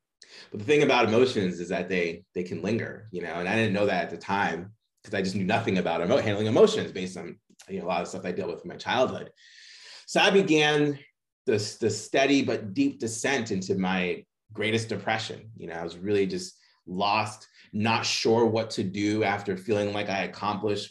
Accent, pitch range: American, 95-110 Hz